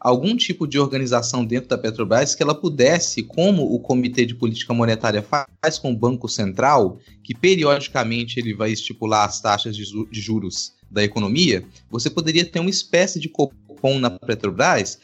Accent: Brazilian